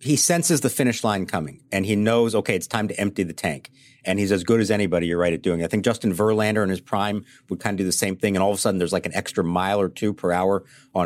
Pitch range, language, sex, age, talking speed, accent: 90-120 Hz, English, male, 50-69, 300 wpm, American